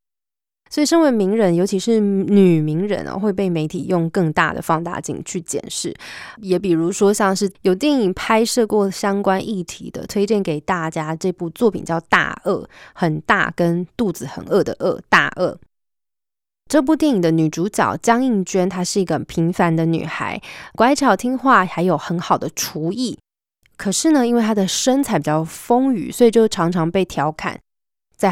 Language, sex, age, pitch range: Chinese, female, 20-39, 170-215 Hz